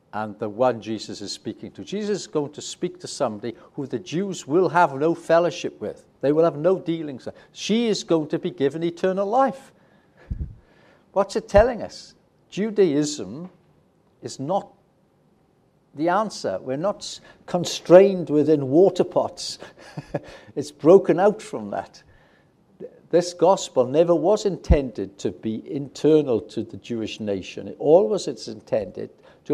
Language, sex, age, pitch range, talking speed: English, male, 60-79, 140-205 Hz, 145 wpm